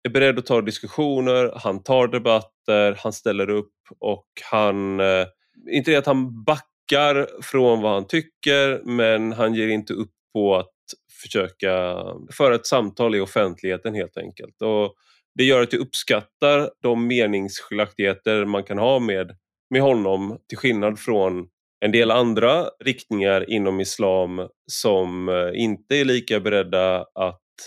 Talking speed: 145 wpm